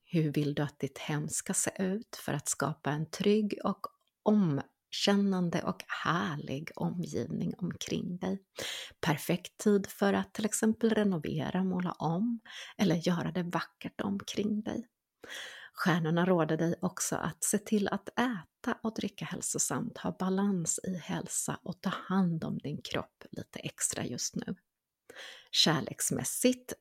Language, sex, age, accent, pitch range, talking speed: Swedish, female, 30-49, native, 165-210 Hz, 140 wpm